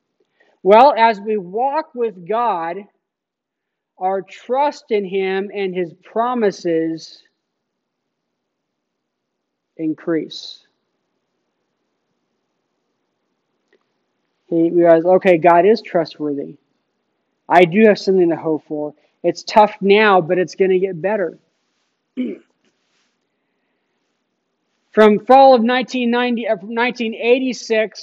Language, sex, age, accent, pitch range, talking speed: English, male, 40-59, American, 170-215 Hz, 90 wpm